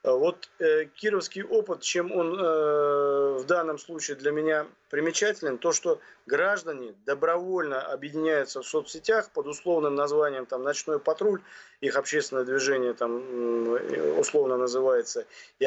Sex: male